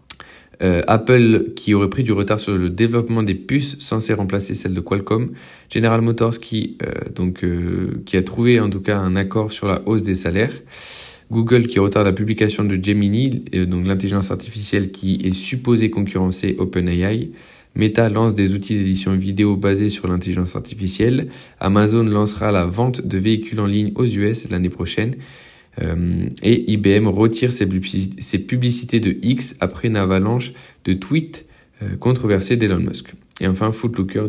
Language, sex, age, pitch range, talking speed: French, male, 20-39, 95-115 Hz, 160 wpm